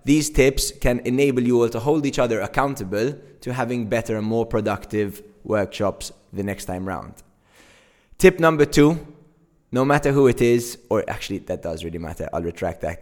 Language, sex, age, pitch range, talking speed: English, male, 20-39, 110-135 Hz, 180 wpm